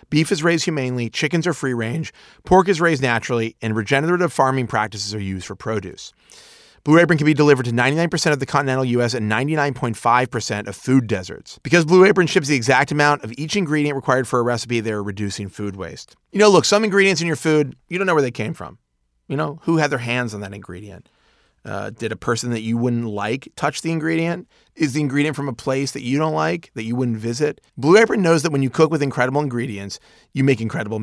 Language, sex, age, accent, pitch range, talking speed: English, male, 30-49, American, 115-155 Hz, 225 wpm